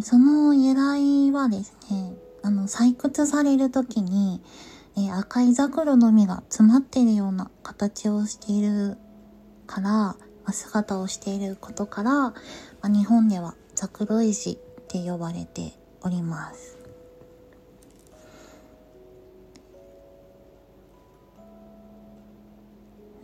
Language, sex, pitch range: Japanese, female, 195-240 Hz